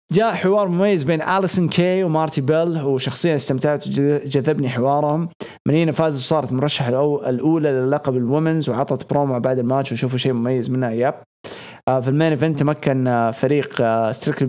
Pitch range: 125-155 Hz